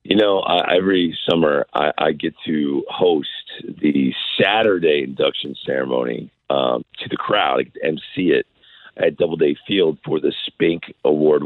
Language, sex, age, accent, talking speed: English, male, 40-59, American, 155 wpm